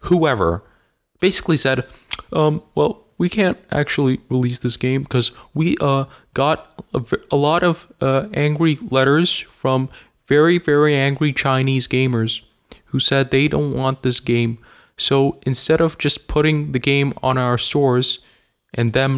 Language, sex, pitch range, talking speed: English, male, 95-140 Hz, 145 wpm